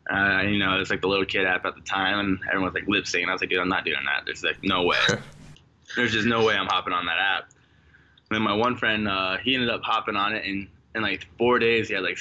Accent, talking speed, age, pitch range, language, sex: American, 285 wpm, 20-39, 95-115 Hz, English, male